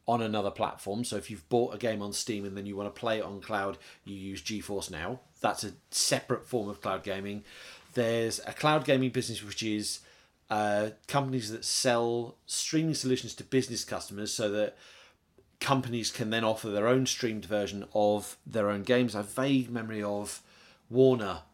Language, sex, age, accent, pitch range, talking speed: English, male, 30-49, British, 100-125 Hz, 190 wpm